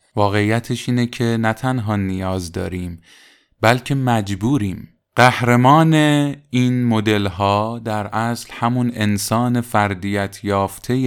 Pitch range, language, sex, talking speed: 95-120 Hz, Persian, male, 100 wpm